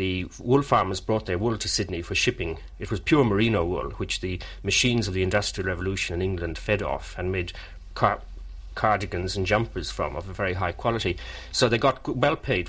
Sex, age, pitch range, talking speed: male, 40-59, 90-110 Hz, 200 wpm